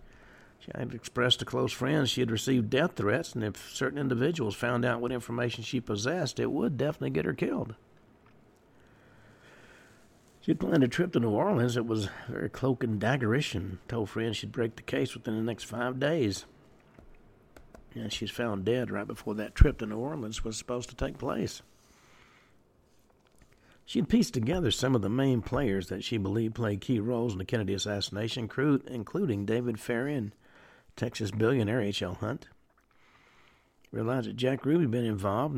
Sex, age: male, 60-79